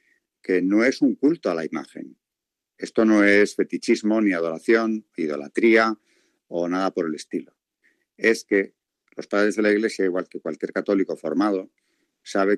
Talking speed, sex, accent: 155 wpm, male, Spanish